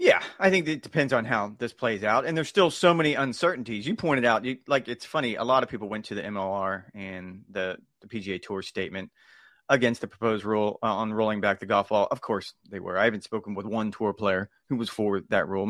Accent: American